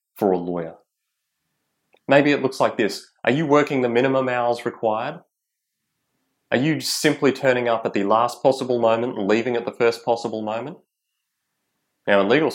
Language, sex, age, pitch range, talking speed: English, male, 30-49, 100-125 Hz, 165 wpm